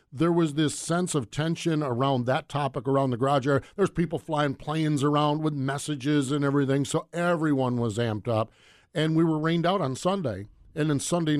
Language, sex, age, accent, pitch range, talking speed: English, male, 50-69, American, 125-155 Hz, 195 wpm